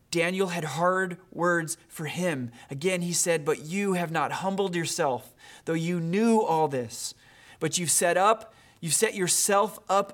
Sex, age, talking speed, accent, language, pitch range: male, 30-49, 165 wpm, American, English, 150-190 Hz